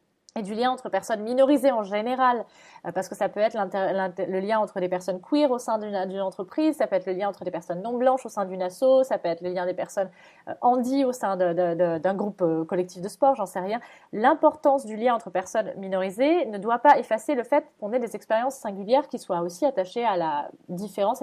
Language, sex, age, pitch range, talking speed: French, female, 30-49, 190-255 Hz, 235 wpm